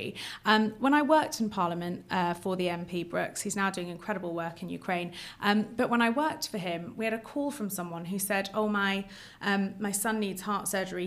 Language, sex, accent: English, female, British